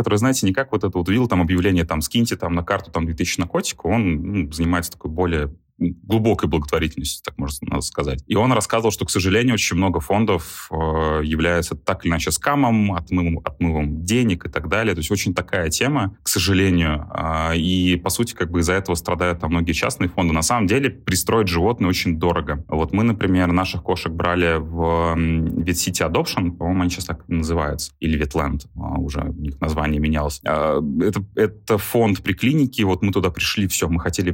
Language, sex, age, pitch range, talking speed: Russian, male, 20-39, 80-100 Hz, 195 wpm